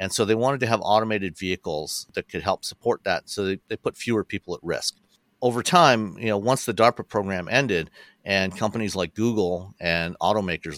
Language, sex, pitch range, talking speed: English, male, 90-115 Hz, 200 wpm